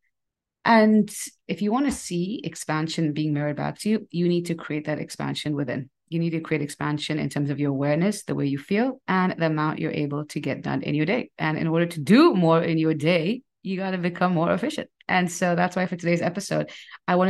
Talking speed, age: 235 wpm, 30-49